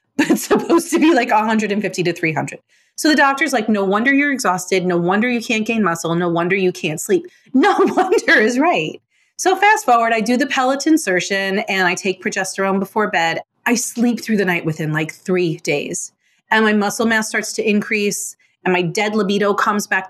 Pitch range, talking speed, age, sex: 200-290 Hz, 205 wpm, 30-49, female